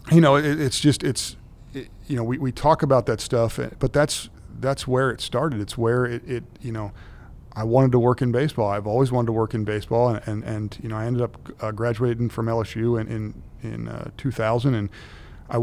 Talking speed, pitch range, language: 230 wpm, 110-125 Hz, English